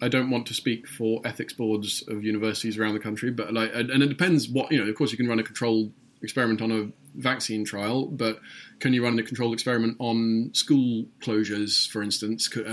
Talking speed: 210 wpm